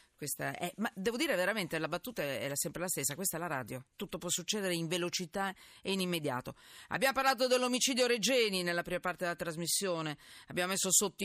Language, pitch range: Italian, 150-205 Hz